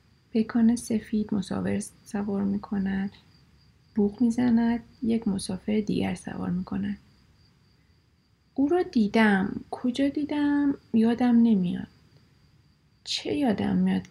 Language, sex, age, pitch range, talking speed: Persian, female, 30-49, 185-240 Hz, 105 wpm